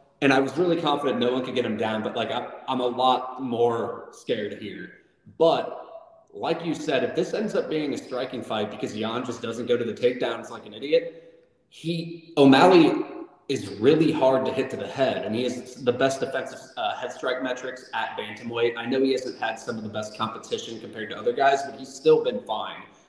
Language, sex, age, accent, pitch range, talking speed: English, male, 30-49, American, 120-170 Hz, 220 wpm